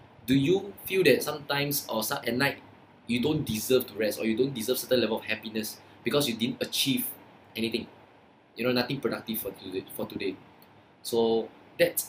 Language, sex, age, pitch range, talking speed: English, male, 20-39, 115-135 Hz, 175 wpm